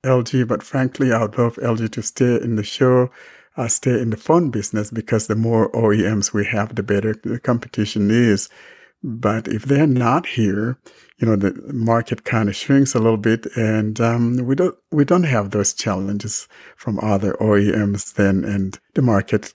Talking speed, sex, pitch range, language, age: 185 wpm, male, 105-125 Hz, English, 60-79